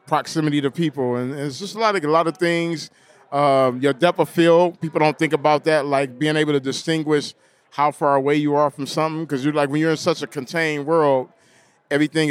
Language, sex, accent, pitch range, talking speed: English, male, American, 135-155 Hz, 225 wpm